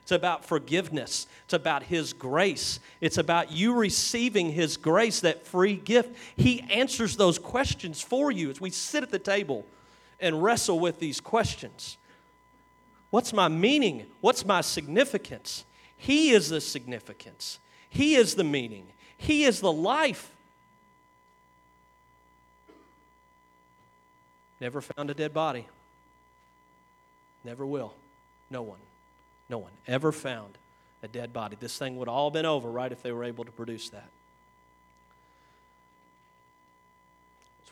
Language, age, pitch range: English, 40-59, 135-165 Hz